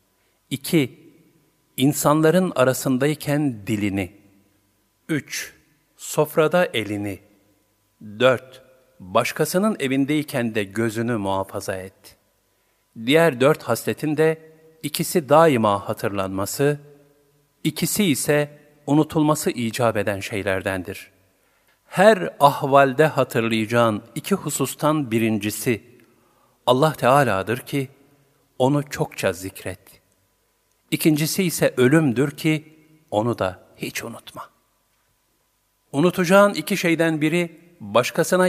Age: 50-69